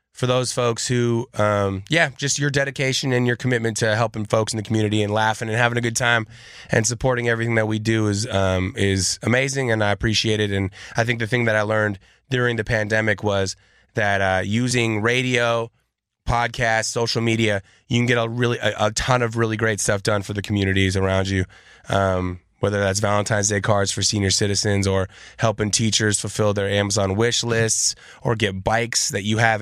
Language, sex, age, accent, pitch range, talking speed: English, male, 20-39, American, 105-125 Hz, 200 wpm